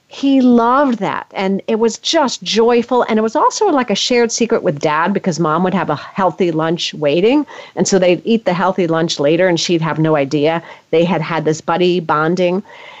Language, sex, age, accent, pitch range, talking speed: English, female, 40-59, American, 185-250 Hz, 210 wpm